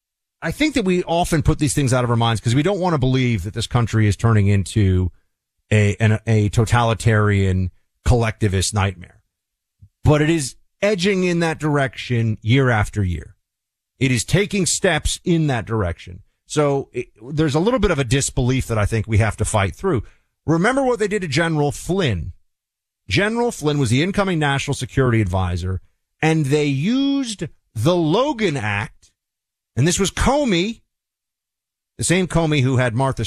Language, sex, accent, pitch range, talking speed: English, male, American, 100-150 Hz, 170 wpm